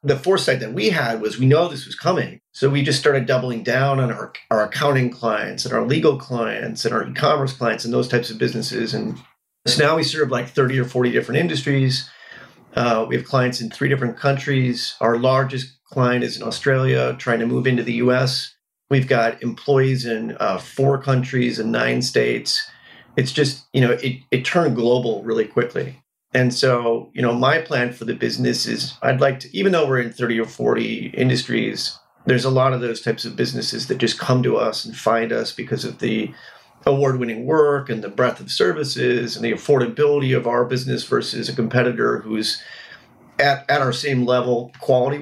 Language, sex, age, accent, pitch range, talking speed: English, male, 40-59, American, 120-140 Hz, 200 wpm